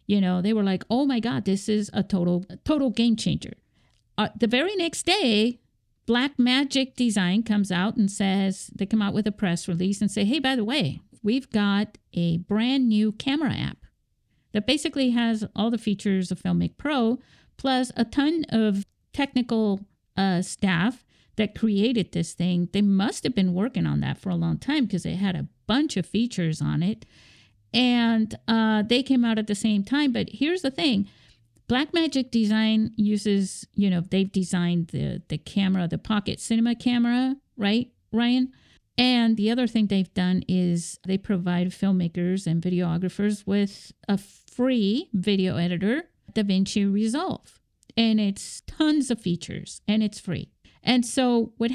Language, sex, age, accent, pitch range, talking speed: English, female, 50-69, American, 195-245 Hz, 170 wpm